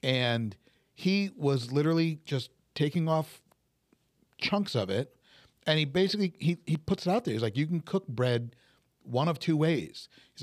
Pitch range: 125-170 Hz